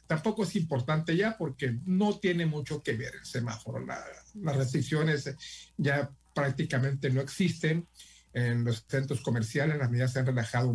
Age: 50-69